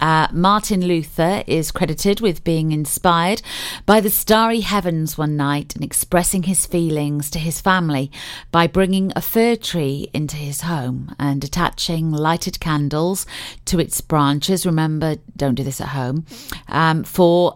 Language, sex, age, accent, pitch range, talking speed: English, female, 40-59, British, 150-190 Hz, 150 wpm